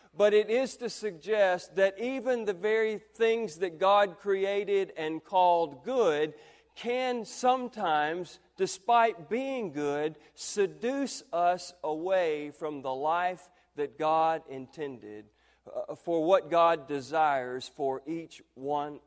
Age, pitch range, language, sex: 40-59, 150-215 Hz, English, male